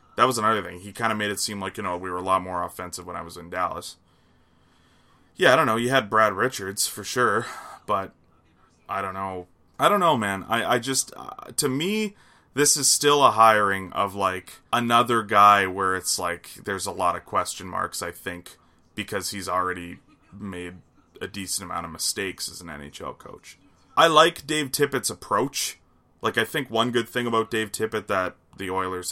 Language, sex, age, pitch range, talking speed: English, male, 20-39, 90-110 Hz, 200 wpm